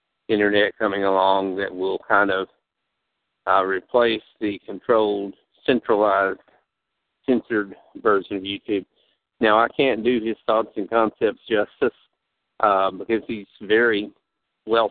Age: 50-69